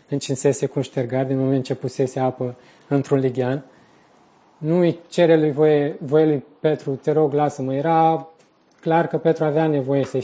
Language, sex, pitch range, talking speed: Romanian, male, 135-160 Hz, 165 wpm